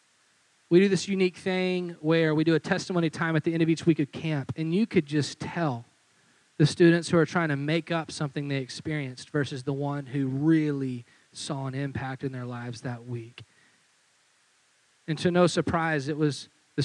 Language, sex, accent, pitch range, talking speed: English, male, American, 140-165 Hz, 195 wpm